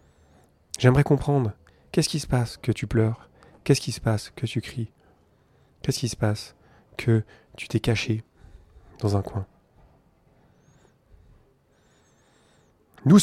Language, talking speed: French, 125 wpm